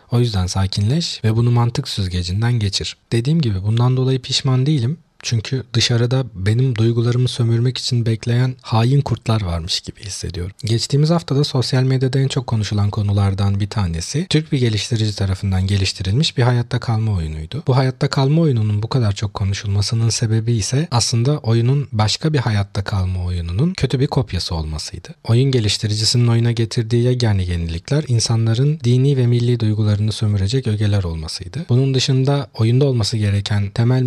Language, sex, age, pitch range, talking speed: Turkish, male, 40-59, 100-130 Hz, 150 wpm